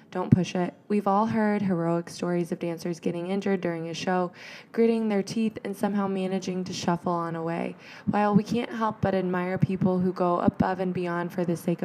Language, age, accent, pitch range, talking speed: English, 20-39, American, 175-210 Hz, 205 wpm